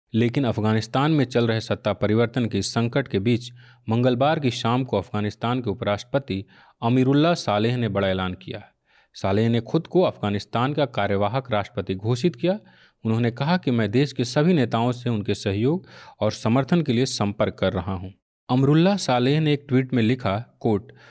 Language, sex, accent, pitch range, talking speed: Hindi, male, native, 110-145 Hz, 175 wpm